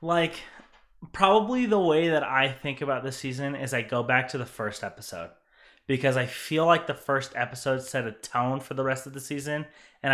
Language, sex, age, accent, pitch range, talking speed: English, male, 20-39, American, 120-150 Hz, 205 wpm